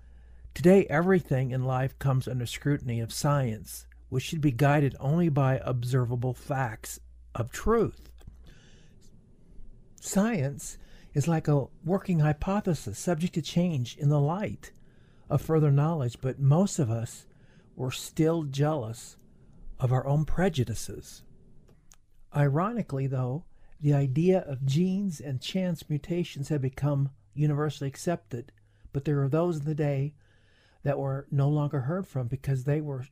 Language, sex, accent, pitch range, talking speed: English, male, American, 125-155 Hz, 135 wpm